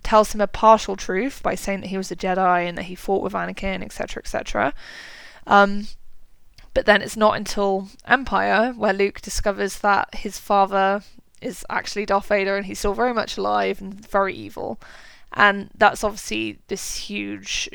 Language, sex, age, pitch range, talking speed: English, female, 10-29, 190-205 Hz, 170 wpm